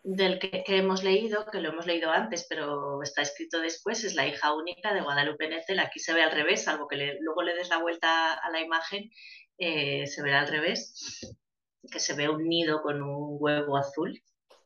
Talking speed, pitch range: 210 wpm, 155-190 Hz